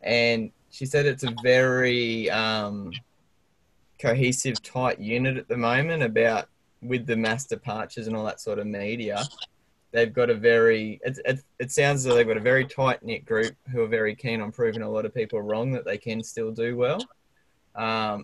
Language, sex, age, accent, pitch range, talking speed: English, male, 10-29, Australian, 115-135 Hz, 190 wpm